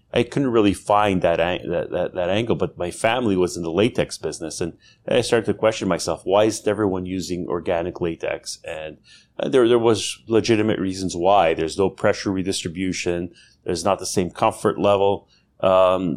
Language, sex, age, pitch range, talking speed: English, male, 30-49, 90-105 Hz, 180 wpm